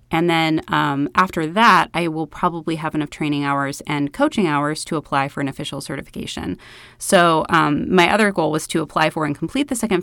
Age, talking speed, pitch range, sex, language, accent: 30-49, 205 wpm, 150-190 Hz, female, English, American